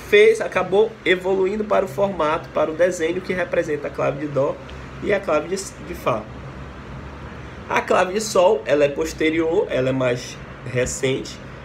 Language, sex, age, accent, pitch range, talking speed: Portuguese, male, 20-39, Brazilian, 125-185 Hz, 165 wpm